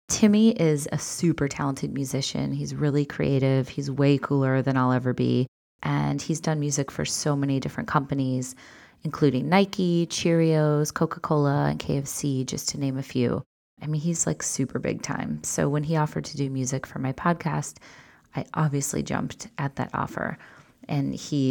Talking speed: 170 wpm